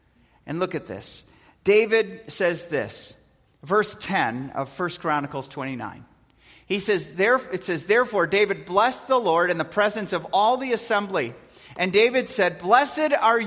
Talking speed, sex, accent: 155 wpm, male, American